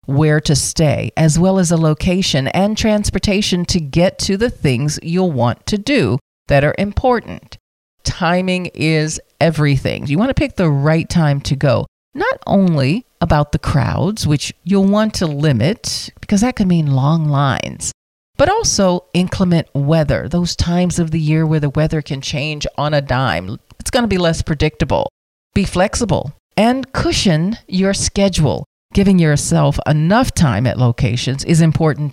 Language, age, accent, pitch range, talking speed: English, 40-59, American, 140-185 Hz, 165 wpm